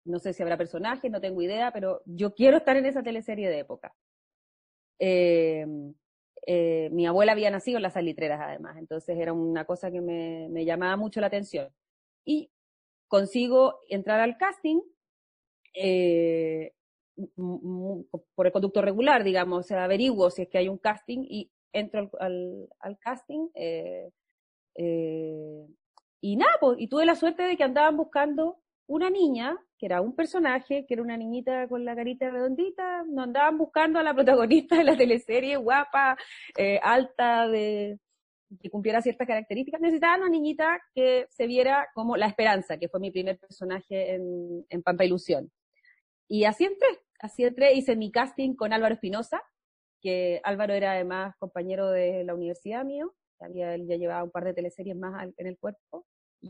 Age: 30-49